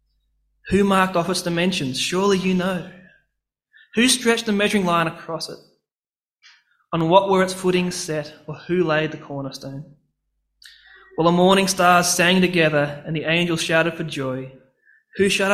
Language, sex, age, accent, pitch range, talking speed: English, male, 20-39, Australian, 150-190 Hz, 155 wpm